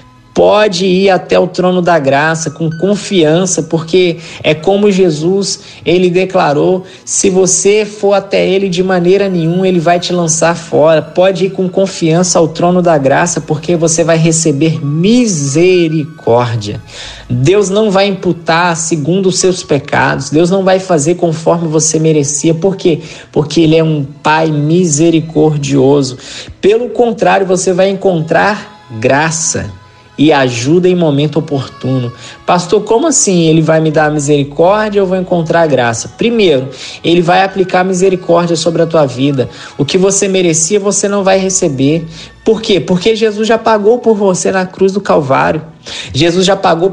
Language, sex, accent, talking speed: Portuguese, male, Brazilian, 155 wpm